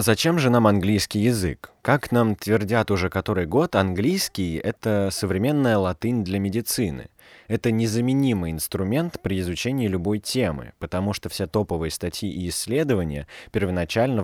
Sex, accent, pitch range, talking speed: male, native, 90-115 Hz, 135 wpm